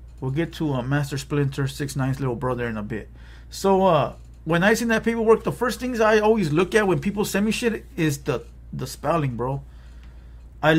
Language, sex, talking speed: English, male, 210 wpm